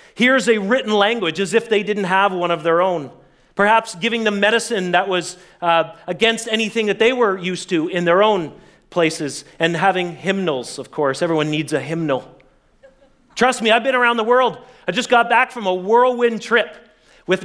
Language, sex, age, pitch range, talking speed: English, male, 40-59, 170-230 Hz, 195 wpm